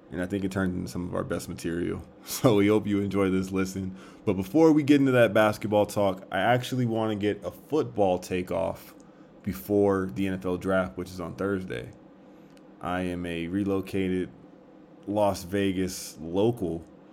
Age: 20-39